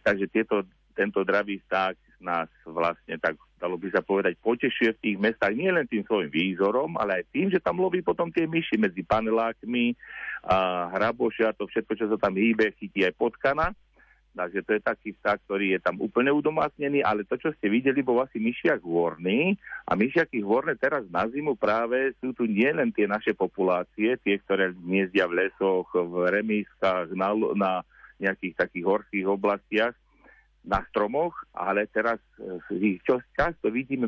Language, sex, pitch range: Slovak, male, 100-120 Hz